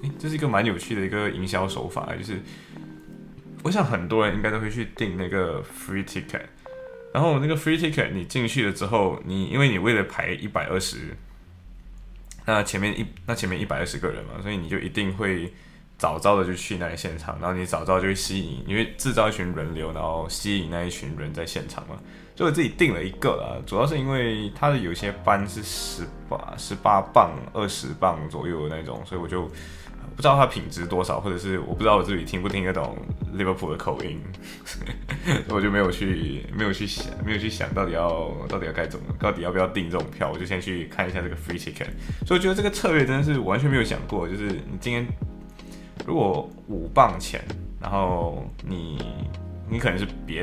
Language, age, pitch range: Chinese, 20-39, 90-110 Hz